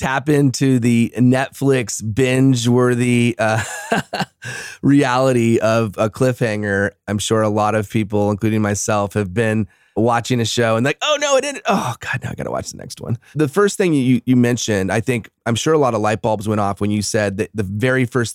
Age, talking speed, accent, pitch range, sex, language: 30-49, 205 wpm, American, 105-125 Hz, male, English